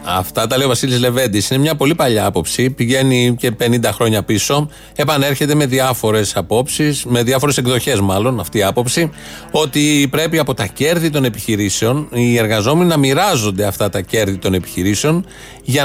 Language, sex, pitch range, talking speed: Greek, male, 120-160 Hz, 165 wpm